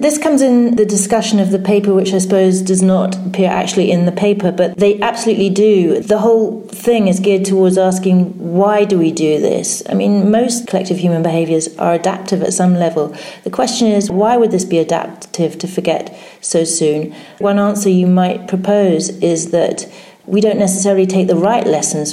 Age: 40-59